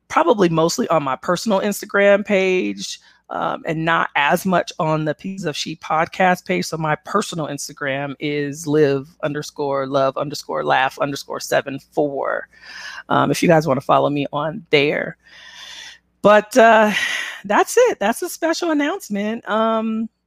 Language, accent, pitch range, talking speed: English, American, 155-205 Hz, 150 wpm